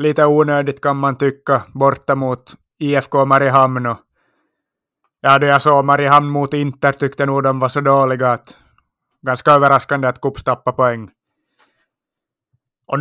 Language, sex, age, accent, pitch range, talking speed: Swedish, male, 30-49, Finnish, 125-145 Hz, 140 wpm